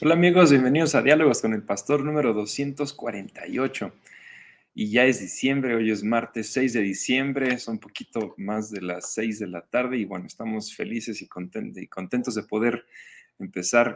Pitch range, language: 100-125 Hz, Spanish